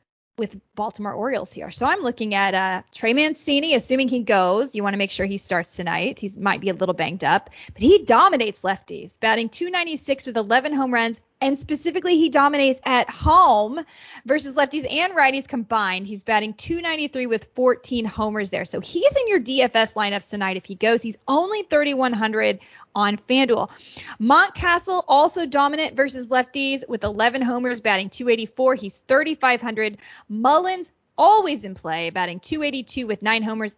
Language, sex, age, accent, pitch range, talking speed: English, female, 20-39, American, 215-305 Hz, 165 wpm